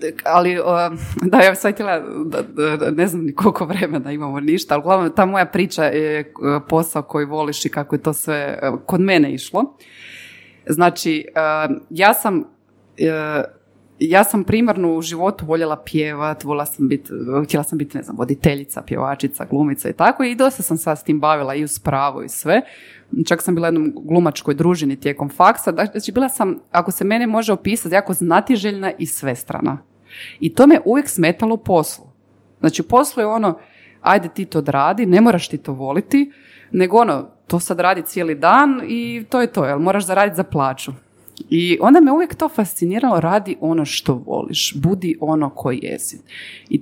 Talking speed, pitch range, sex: 165 wpm, 155-220 Hz, female